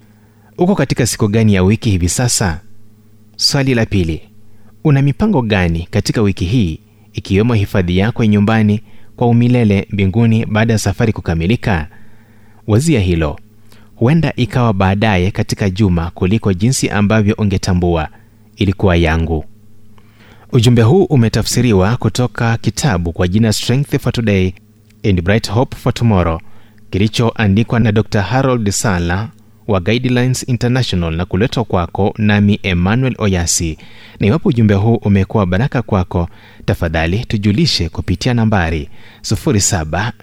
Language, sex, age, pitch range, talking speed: Swahili, male, 30-49, 95-115 Hz, 120 wpm